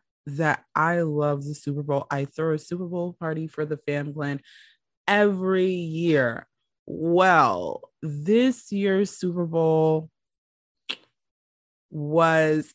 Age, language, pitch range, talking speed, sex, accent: 20-39, English, 145-180 Hz, 115 wpm, female, American